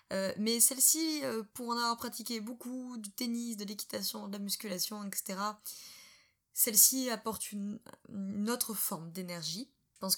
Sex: female